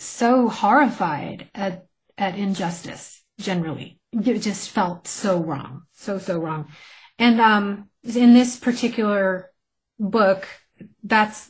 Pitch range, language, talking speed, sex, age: 180-215 Hz, English, 110 wpm, female, 30-49